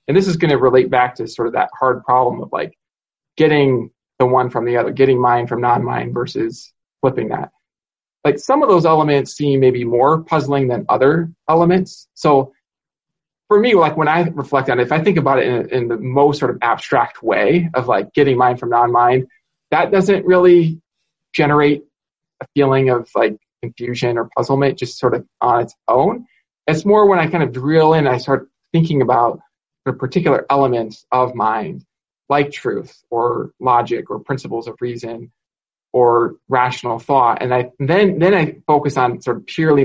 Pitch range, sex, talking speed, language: 125-165 Hz, male, 185 wpm, English